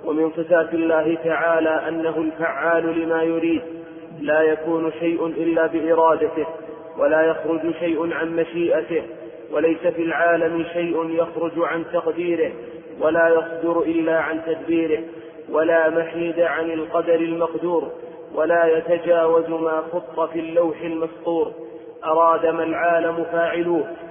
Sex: male